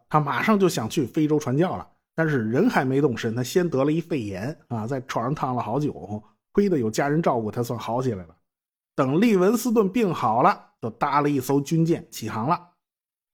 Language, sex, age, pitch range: Chinese, male, 50-69, 125-175 Hz